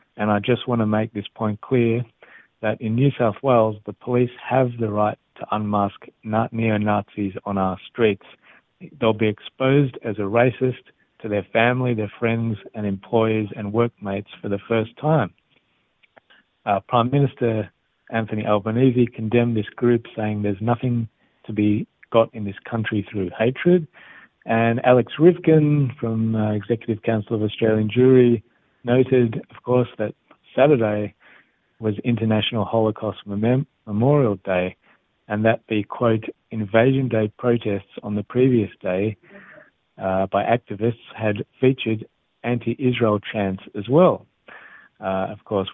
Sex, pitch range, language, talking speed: male, 105-120 Hz, Hebrew, 140 wpm